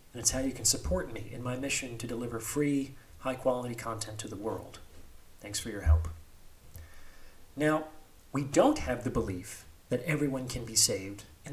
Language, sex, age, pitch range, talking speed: English, male, 30-49, 105-140 Hz, 175 wpm